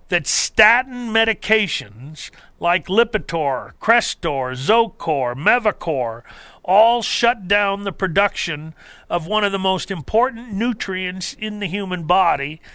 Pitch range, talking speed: 155-215 Hz, 115 wpm